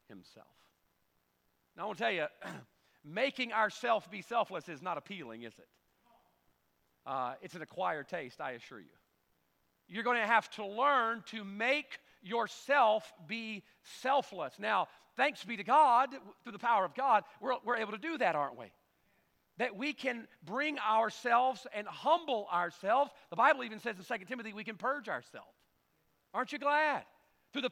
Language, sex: English, male